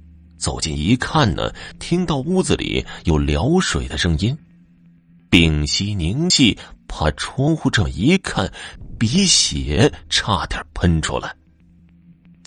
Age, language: 30-49, Chinese